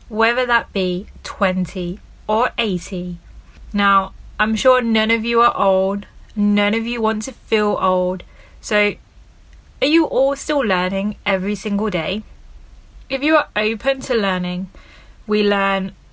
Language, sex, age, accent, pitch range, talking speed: English, female, 20-39, British, 190-250 Hz, 140 wpm